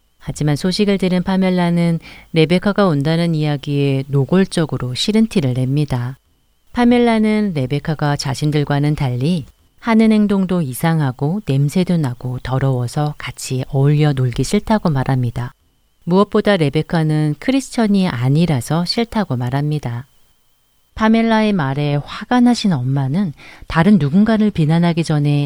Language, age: Korean, 40-59